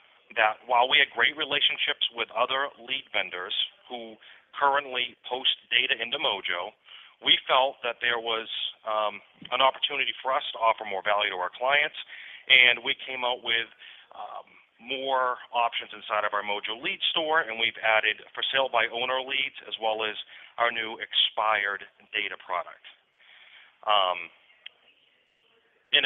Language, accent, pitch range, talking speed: English, American, 110-140 Hz, 150 wpm